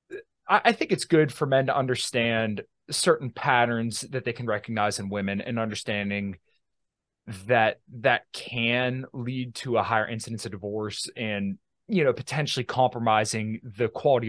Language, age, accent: English, 20-39, American